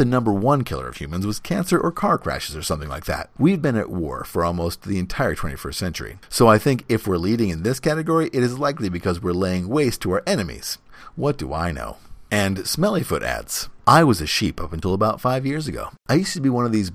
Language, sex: English, male